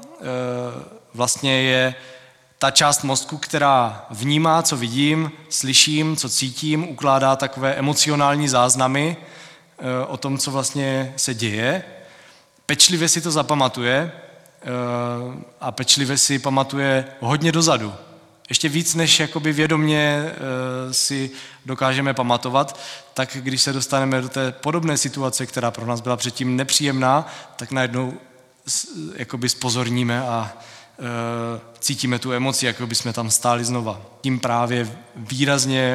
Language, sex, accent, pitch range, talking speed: Czech, male, native, 120-140 Hz, 120 wpm